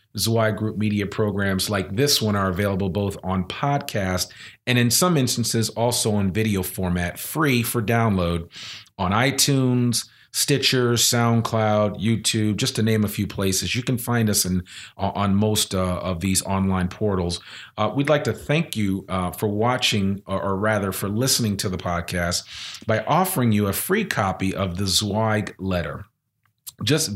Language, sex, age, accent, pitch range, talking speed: English, male, 40-59, American, 95-120 Hz, 165 wpm